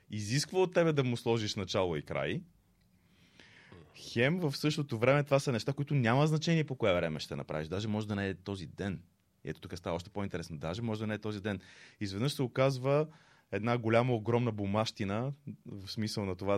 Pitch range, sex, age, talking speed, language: 100-135 Hz, male, 30-49, 200 wpm, Bulgarian